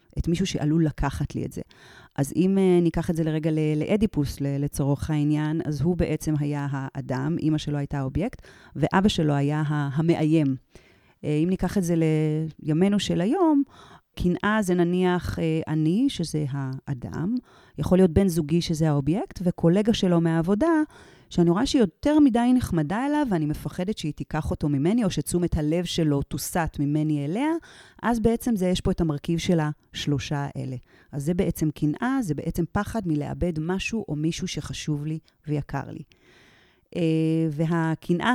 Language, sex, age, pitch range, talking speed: Hebrew, female, 30-49, 150-185 Hz, 160 wpm